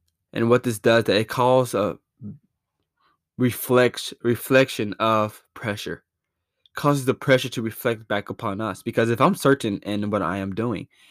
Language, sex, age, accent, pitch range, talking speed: English, male, 20-39, American, 105-125 Hz, 145 wpm